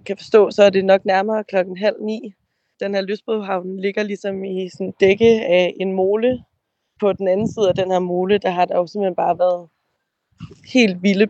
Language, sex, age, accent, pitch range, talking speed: Danish, female, 20-39, native, 180-205 Hz, 195 wpm